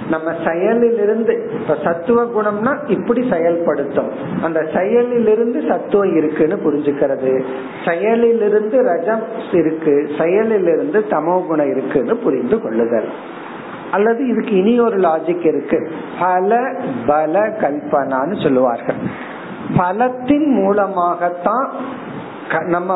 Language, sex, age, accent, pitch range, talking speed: Tamil, male, 50-69, native, 170-225 Hz, 70 wpm